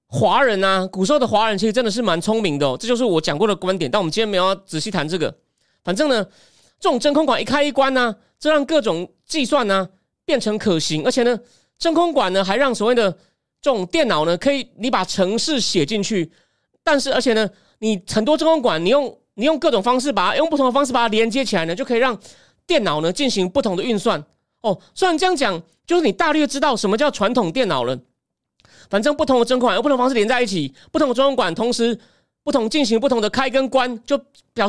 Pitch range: 210-285 Hz